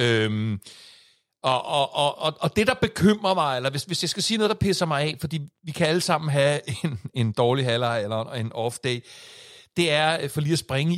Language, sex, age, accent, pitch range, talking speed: Danish, male, 60-79, native, 130-170 Hz, 215 wpm